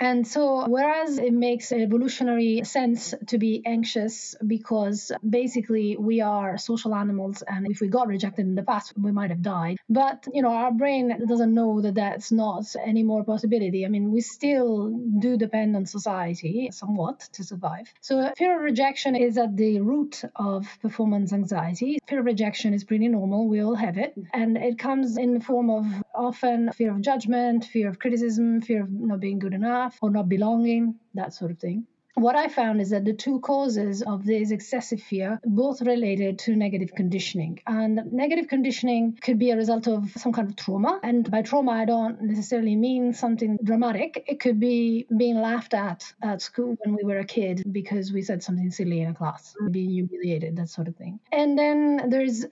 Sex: female